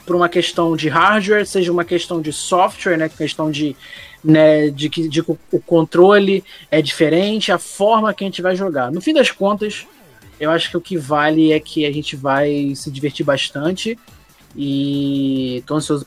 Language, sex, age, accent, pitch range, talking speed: Portuguese, male, 20-39, Brazilian, 170-220 Hz, 185 wpm